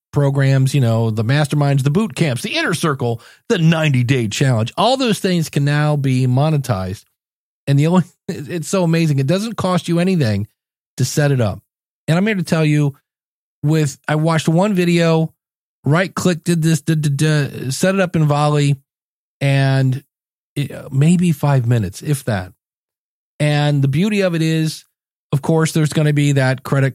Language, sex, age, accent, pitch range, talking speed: English, male, 40-59, American, 130-170 Hz, 180 wpm